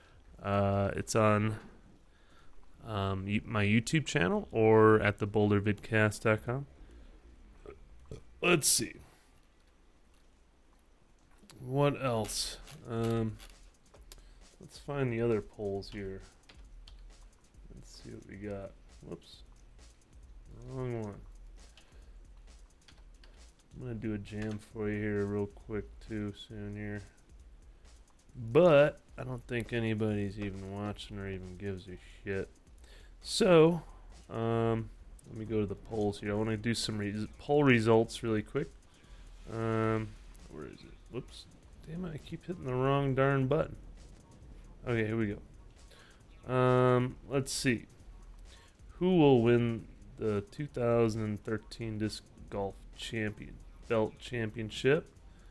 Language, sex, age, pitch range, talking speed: English, male, 20-39, 100-120 Hz, 115 wpm